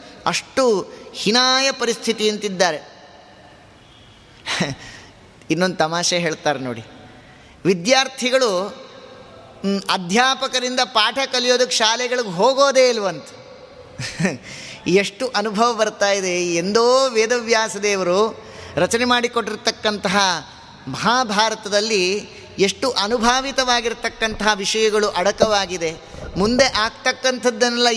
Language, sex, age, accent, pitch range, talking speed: Kannada, male, 20-39, native, 175-240 Hz, 60 wpm